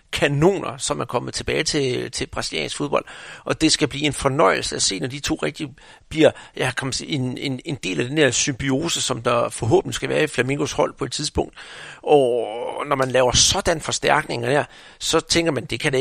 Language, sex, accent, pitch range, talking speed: Danish, male, native, 125-160 Hz, 210 wpm